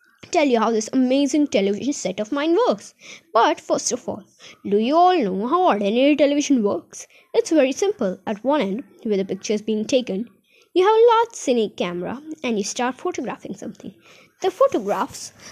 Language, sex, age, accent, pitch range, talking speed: Hindi, female, 20-39, native, 215-310 Hz, 180 wpm